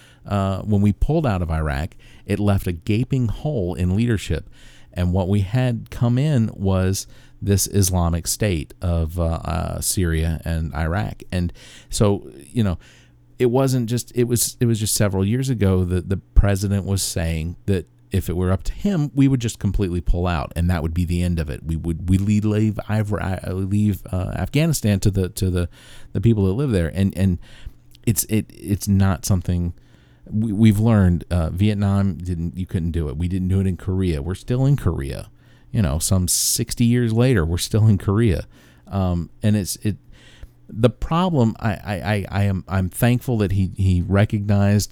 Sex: male